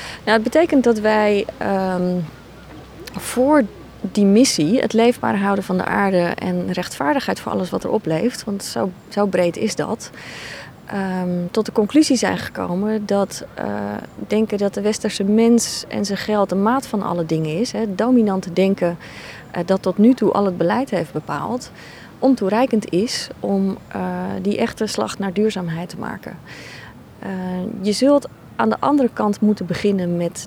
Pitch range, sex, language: 180-220 Hz, female, Dutch